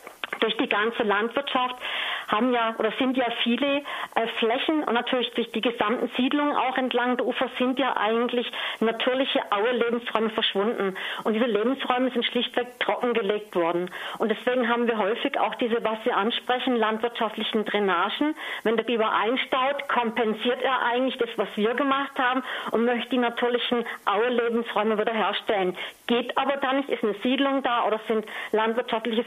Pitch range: 220-255 Hz